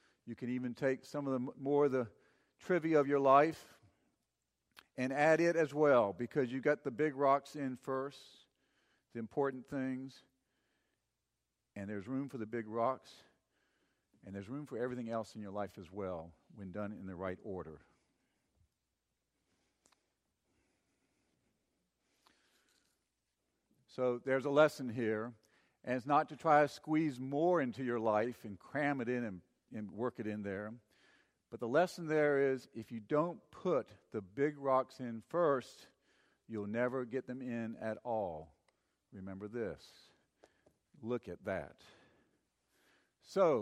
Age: 50-69